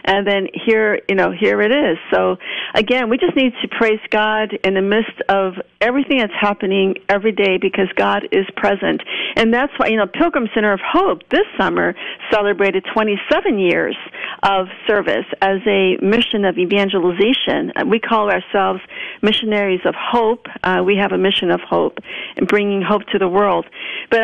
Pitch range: 195-250 Hz